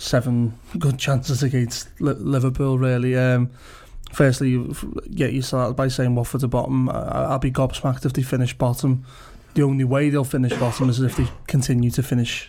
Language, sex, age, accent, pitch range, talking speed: English, male, 20-39, British, 125-140 Hz, 175 wpm